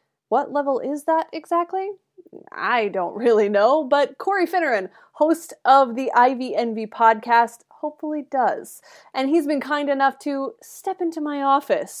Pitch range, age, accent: 215-310 Hz, 20-39, American